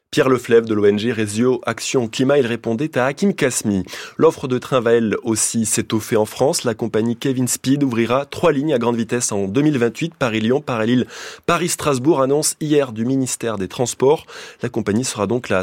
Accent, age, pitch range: French, 20-39, 110-135 Hz